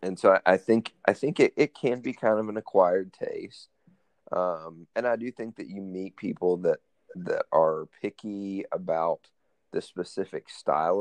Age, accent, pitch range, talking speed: 30-49, American, 90-145 Hz, 175 wpm